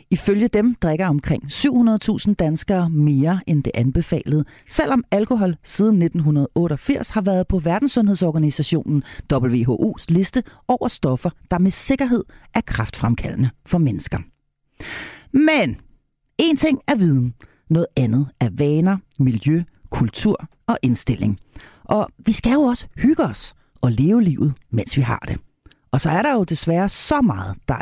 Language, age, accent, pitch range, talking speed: Danish, 40-59, native, 140-220 Hz, 140 wpm